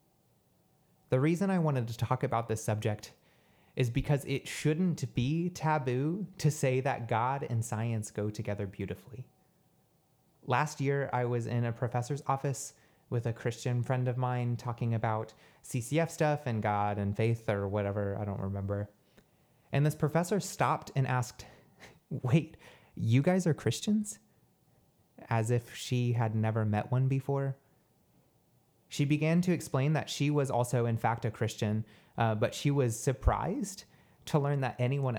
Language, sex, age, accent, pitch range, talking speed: English, male, 30-49, American, 110-140 Hz, 155 wpm